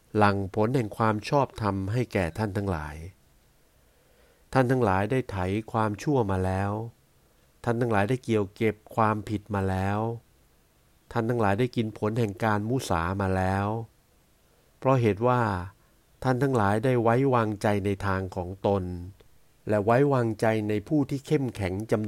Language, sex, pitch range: Thai, male, 95-120 Hz